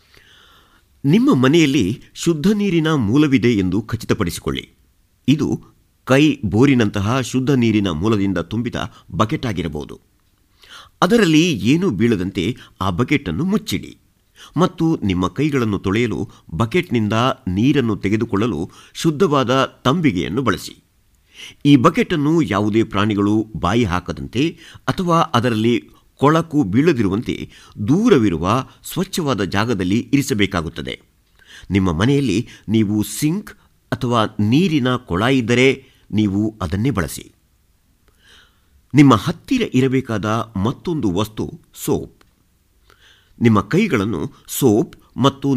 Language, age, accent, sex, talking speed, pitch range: Kannada, 50-69, native, male, 90 wpm, 100-140 Hz